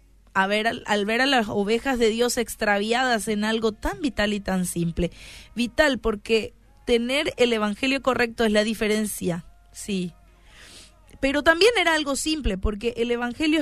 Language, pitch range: Spanish, 195-255 Hz